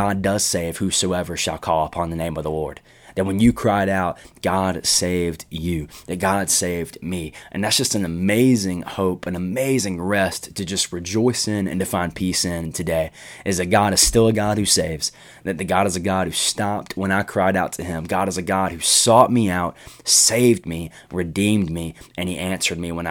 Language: English